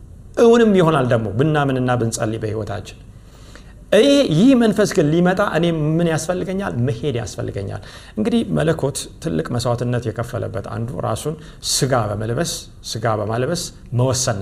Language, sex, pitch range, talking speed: Amharic, male, 115-175 Hz, 120 wpm